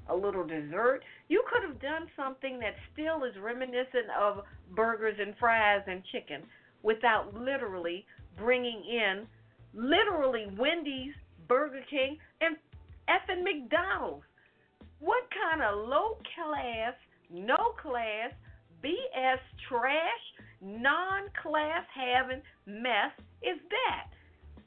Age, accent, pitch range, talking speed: 50-69, American, 230-330 Hz, 95 wpm